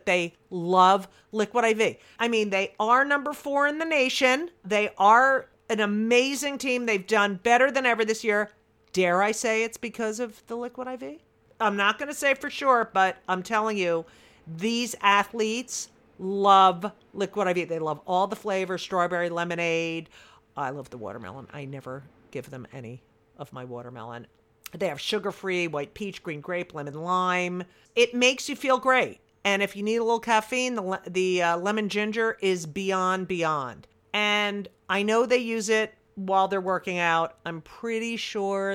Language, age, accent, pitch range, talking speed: English, 50-69, American, 165-225 Hz, 170 wpm